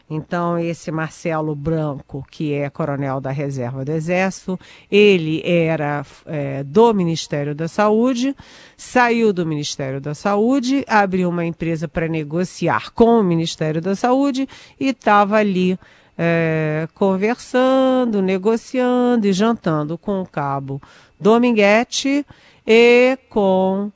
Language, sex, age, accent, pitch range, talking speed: Portuguese, female, 40-59, Brazilian, 160-210 Hz, 115 wpm